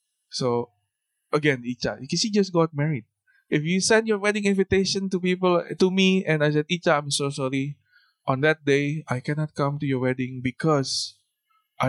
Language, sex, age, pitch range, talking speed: English, male, 20-39, 135-185 Hz, 175 wpm